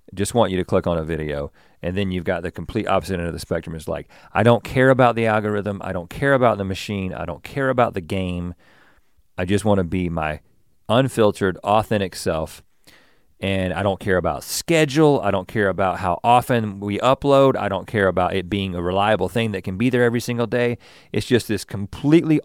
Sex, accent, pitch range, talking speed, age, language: male, American, 95-135 Hz, 215 wpm, 40-59, English